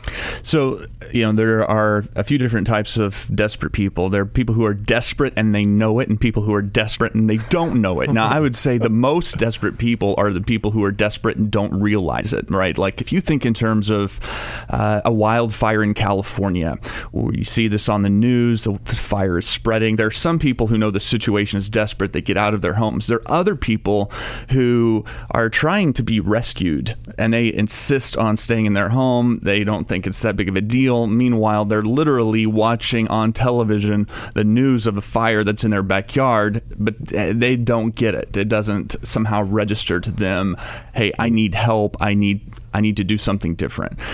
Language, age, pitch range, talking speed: English, 30-49, 105-120 Hz, 210 wpm